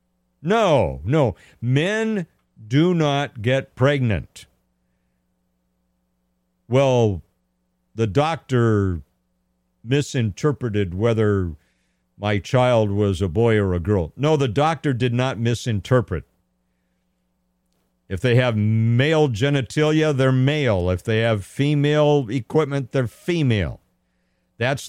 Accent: American